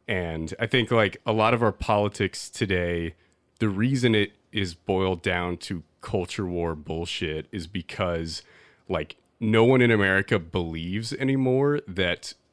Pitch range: 85-105 Hz